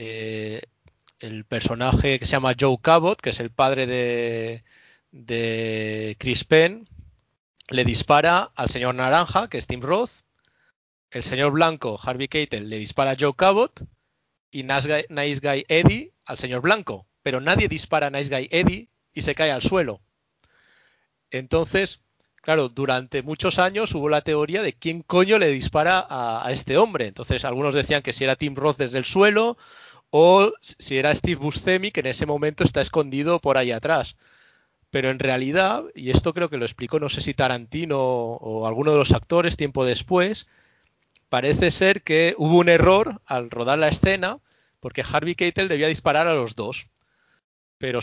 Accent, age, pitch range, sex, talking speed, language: Spanish, 30-49, 130-180 Hz, male, 170 wpm, Spanish